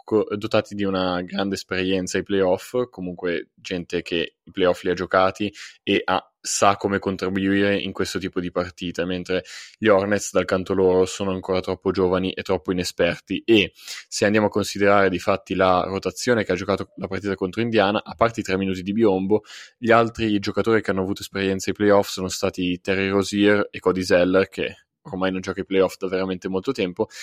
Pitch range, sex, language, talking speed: 95-105 Hz, male, Italian, 190 wpm